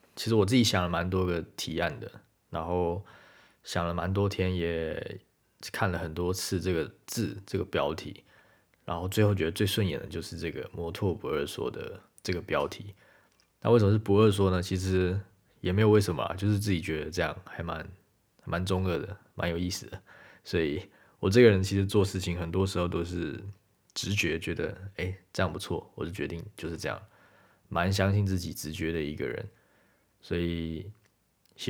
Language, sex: Chinese, male